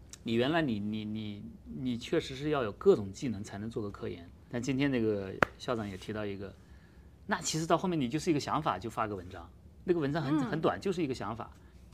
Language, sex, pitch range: Chinese, male, 105-155 Hz